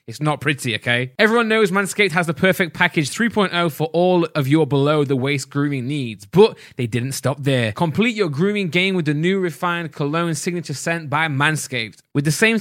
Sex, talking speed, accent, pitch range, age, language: male, 190 wpm, British, 135-180 Hz, 10-29, English